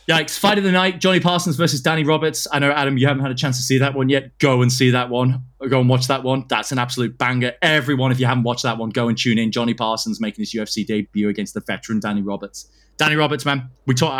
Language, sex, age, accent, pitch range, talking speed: English, male, 20-39, British, 120-140 Hz, 270 wpm